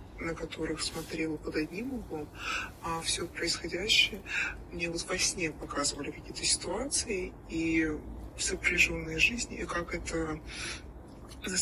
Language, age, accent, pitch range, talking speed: Russian, 30-49, native, 150-175 Hz, 120 wpm